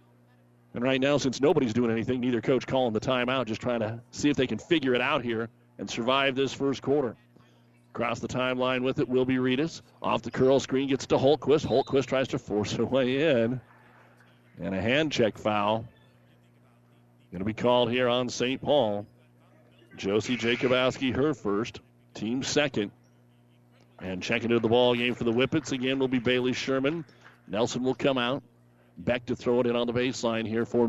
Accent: American